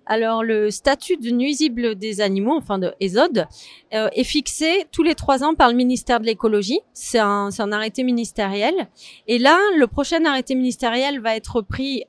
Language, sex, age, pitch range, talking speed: French, female, 30-49, 220-280 Hz, 185 wpm